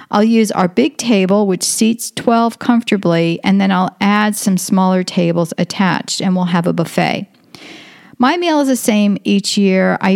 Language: English